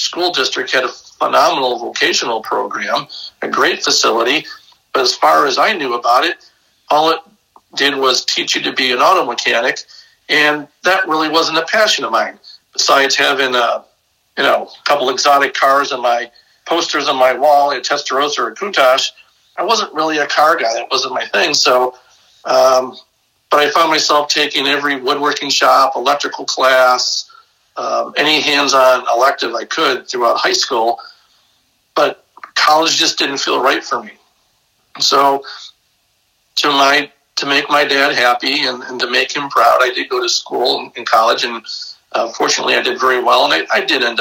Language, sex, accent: English, male, American